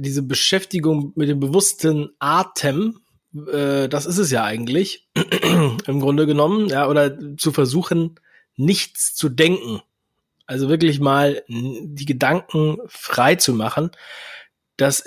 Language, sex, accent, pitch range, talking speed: German, male, German, 140-165 Hz, 125 wpm